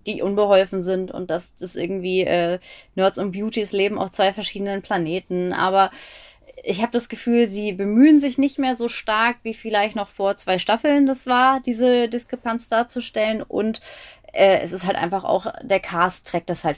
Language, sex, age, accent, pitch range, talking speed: German, female, 20-39, German, 175-225 Hz, 180 wpm